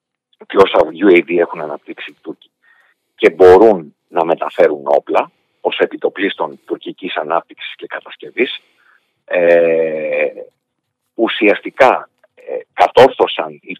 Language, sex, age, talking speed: Greek, male, 50-69, 100 wpm